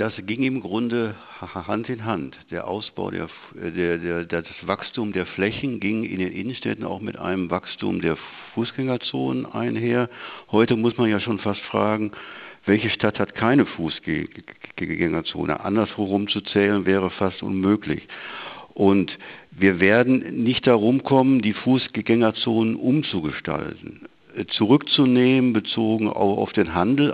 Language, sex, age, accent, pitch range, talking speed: German, male, 60-79, German, 100-125 Hz, 125 wpm